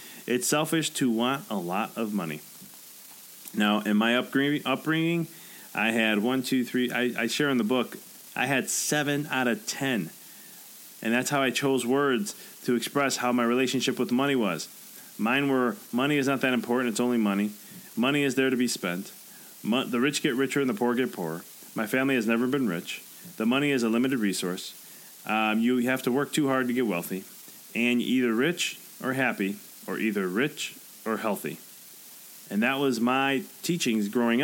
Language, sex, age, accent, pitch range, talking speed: English, male, 30-49, American, 120-150 Hz, 185 wpm